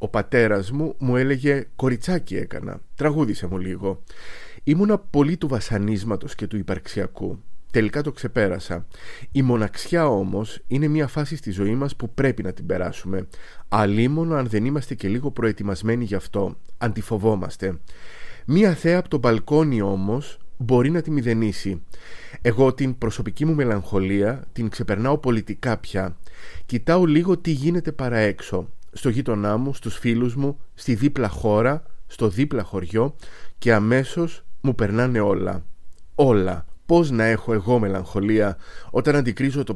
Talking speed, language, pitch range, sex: 145 wpm, Greek, 100-135 Hz, male